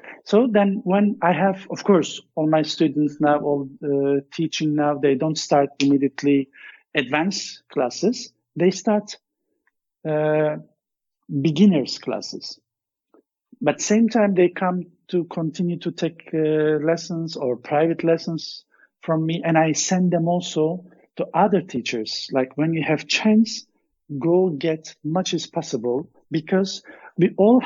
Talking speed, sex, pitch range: 135 wpm, male, 155-215 Hz